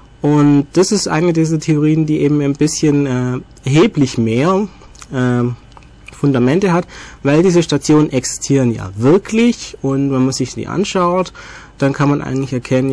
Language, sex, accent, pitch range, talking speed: German, male, German, 125-155 Hz, 155 wpm